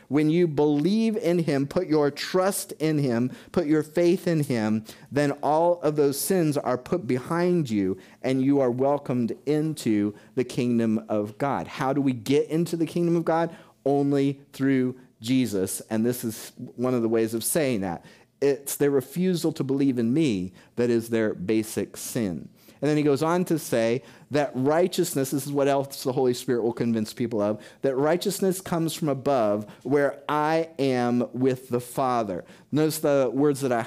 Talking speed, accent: 180 wpm, American